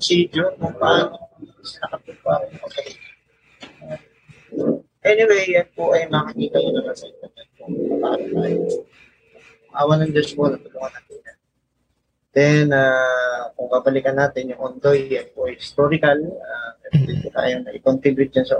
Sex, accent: male, native